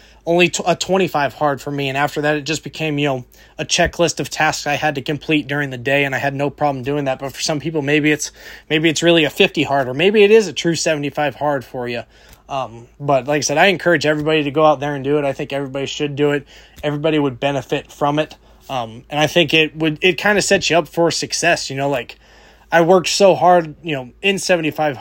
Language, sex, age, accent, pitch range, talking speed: English, male, 20-39, American, 140-170 Hz, 250 wpm